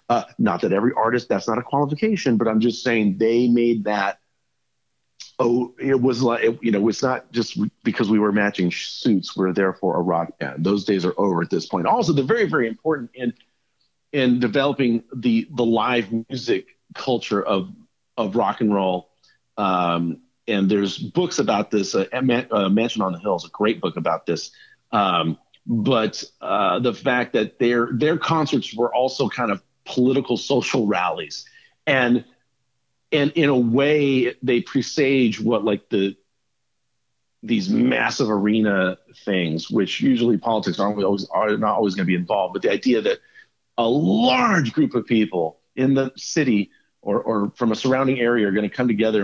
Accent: American